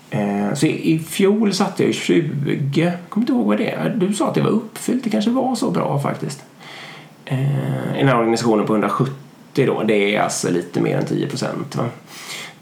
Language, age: Swedish, 20-39